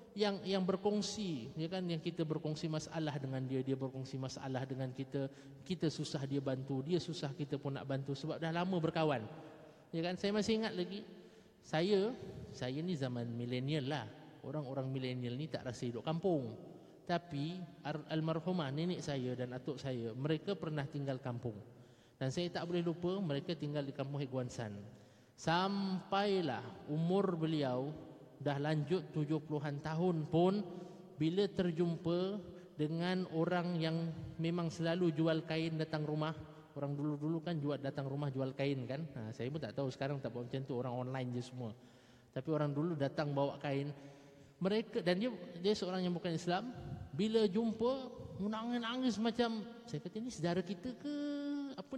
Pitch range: 135-180 Hz